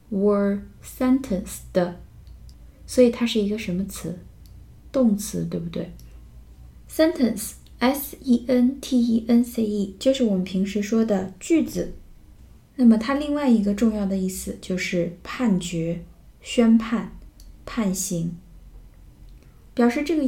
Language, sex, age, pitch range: Chinese, female, 20-39, 185-240 Hz